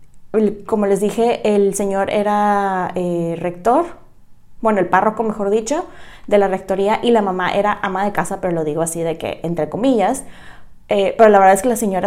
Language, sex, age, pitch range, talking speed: Spanish, female, 20-39, 180-220 Hz, 195 wpm